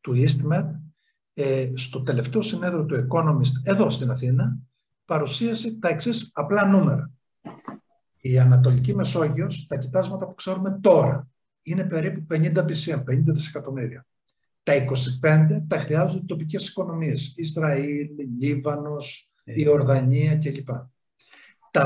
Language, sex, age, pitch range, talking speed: Greek, male, 60-79, 140-190 Hz, 115 wpm